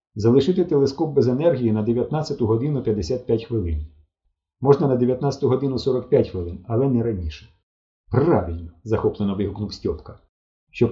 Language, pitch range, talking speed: Ukrainian, 85-130 Hz, 125 wpm